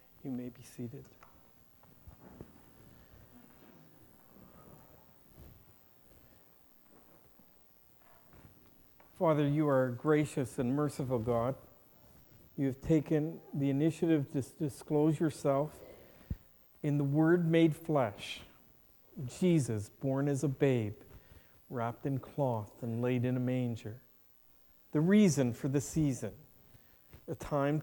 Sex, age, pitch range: male, 60-79, 125-155 Hz